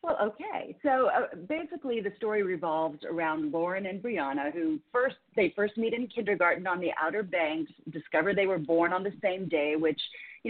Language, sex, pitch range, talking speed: English, female, 170-235 Hz, 190 wpm